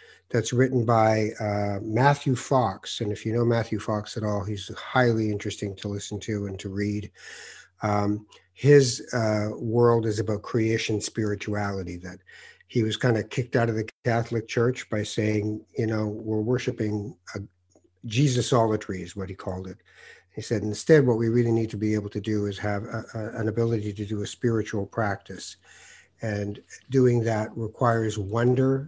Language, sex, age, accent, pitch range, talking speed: English, male, 50-69, American, 105-125 Hz, 170 wpm